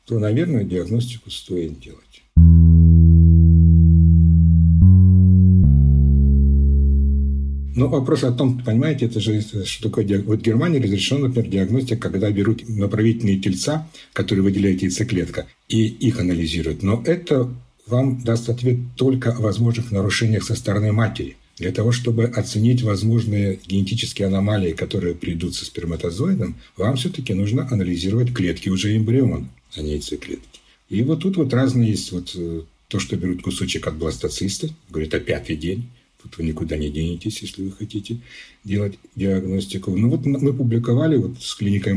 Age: 60-79